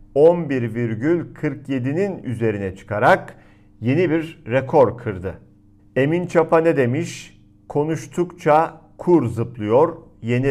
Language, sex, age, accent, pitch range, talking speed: Turkish, male, 50-69, native, 110-155 Hz, 85 wpm